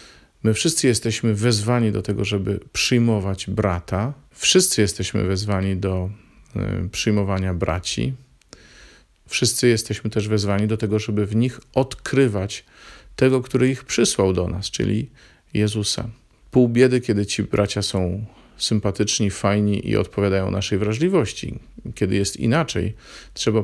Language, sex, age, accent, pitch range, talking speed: Polish, male, 40-59, native, 100-115 Hz, 125 wpm